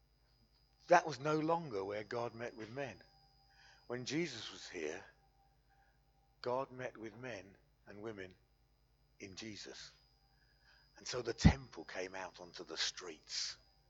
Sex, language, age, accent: male, English, 50-69, British